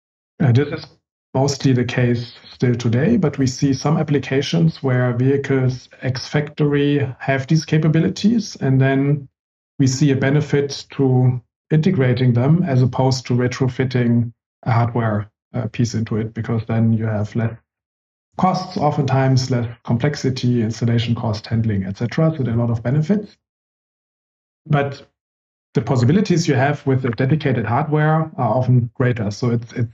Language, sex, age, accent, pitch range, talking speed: English, male, 50-69, German, 115-140 Hz, 145 wpm